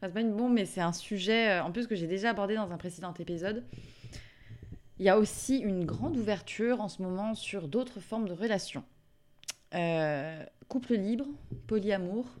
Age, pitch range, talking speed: 20-39, 150-210 Hz, 180 wpm